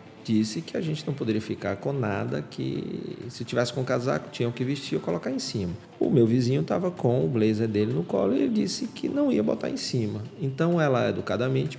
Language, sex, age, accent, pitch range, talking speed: Portuguese, male, 40-59, Brazilian, 110-165 Hz, 225 wpm